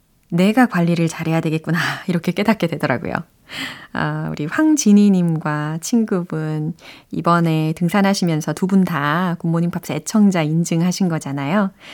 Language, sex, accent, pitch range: Korean, female, native, 165-255 Hz